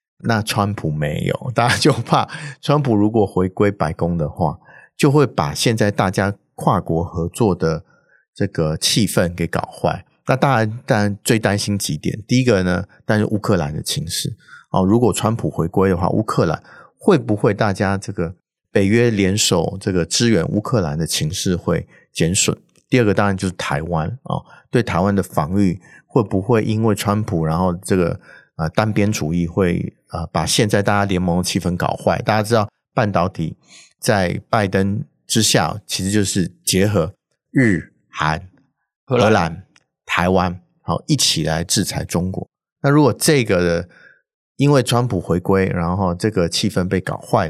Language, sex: Chinese, male